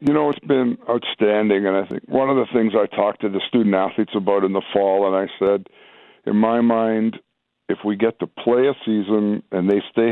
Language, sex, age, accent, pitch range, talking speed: English, male, 50-69, American, 100-110 Hz, 220 wpm